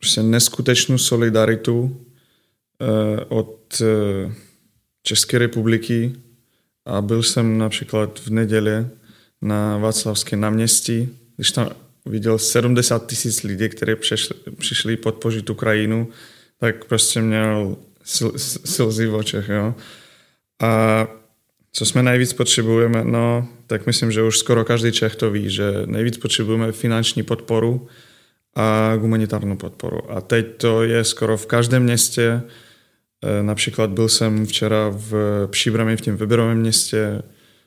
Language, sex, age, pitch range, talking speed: Czech, male, 20-39, 110-120 Hz, 120 wpm